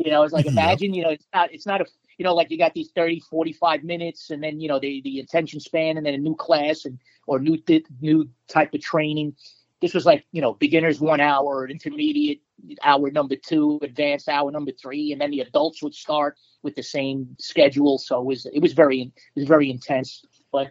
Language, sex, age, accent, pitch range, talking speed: English, male, 40-59, American, 125-155 Hz, 230 wpm